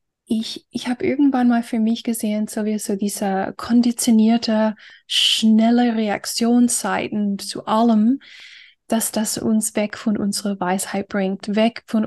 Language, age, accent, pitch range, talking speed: German, 10-29, German, 205-245 Hz, 135 wpm